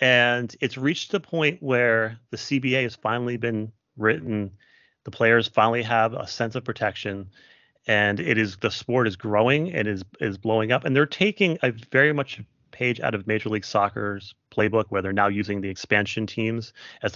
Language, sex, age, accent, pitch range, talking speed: English, male, 30-49, American, 105-135 Hz, 185 wpm